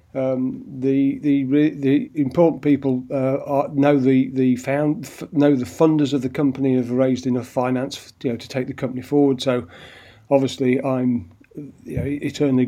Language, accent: English, British